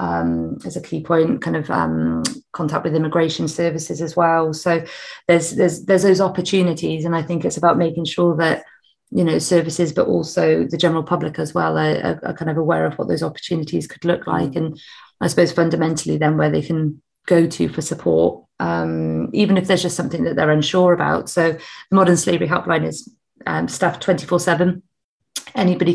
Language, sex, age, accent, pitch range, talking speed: English, female, 30-49, British, 155-175 Hz, 190 wpm